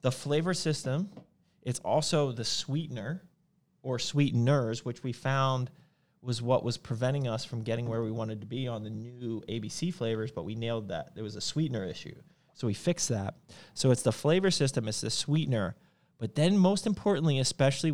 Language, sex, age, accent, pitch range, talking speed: English, male, 30-49, American, 115-155 Hz, 185 wpm